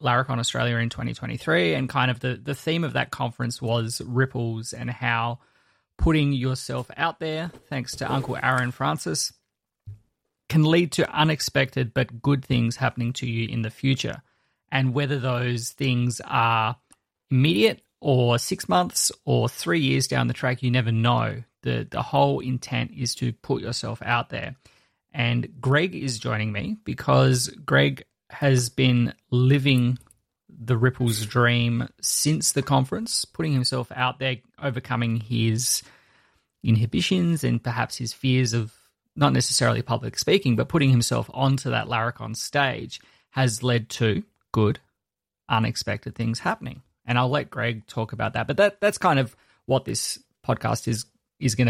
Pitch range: 115-130 Hz